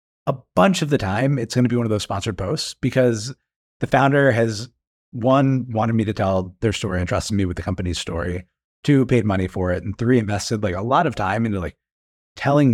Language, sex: English, male